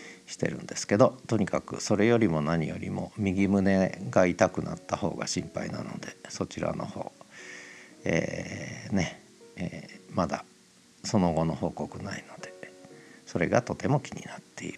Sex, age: male, 50-69